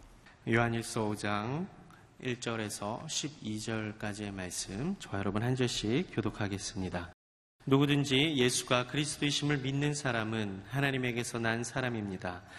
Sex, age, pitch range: male, 30-49, 100-125 Hz